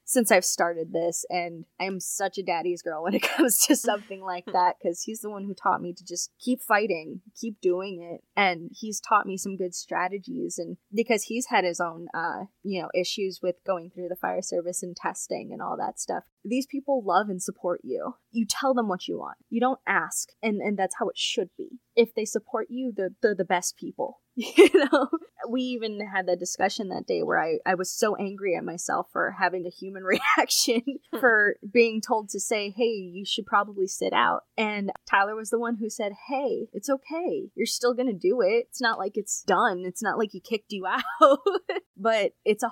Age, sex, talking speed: 20-39, female, 220 wpm